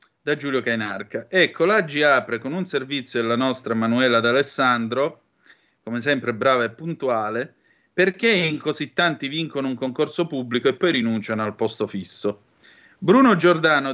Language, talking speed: Italian, 145 wpm